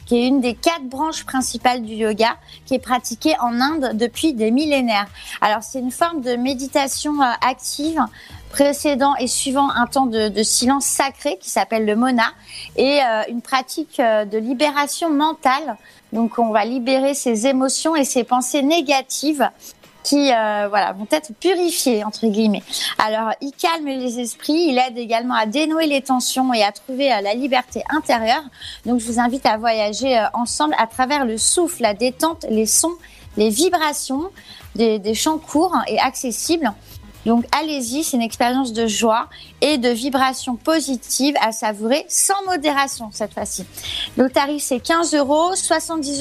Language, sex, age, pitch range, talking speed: French, female, 20-39, 235-290 Hz, 160 wpm